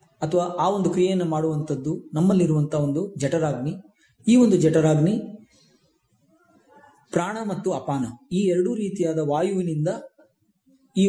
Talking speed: 105 wpm